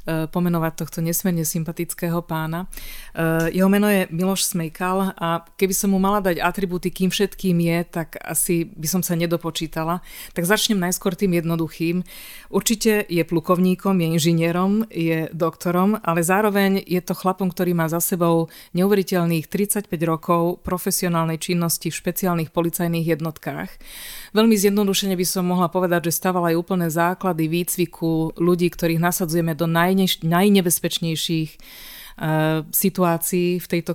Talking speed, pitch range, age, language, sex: 135 wpm, 165-185 Hz, 30-49, Slovak, female